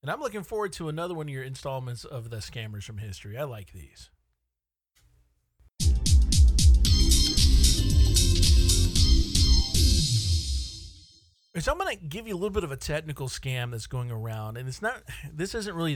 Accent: American